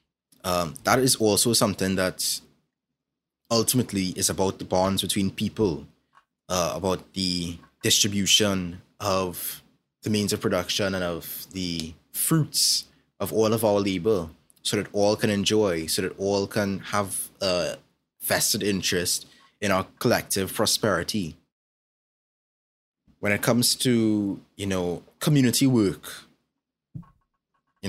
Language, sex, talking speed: English, male, 125 wpm